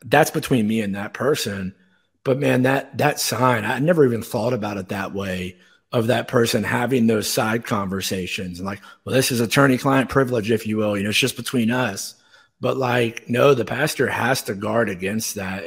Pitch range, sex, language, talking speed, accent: 110-130 Hz, male, English, 205 wpm, American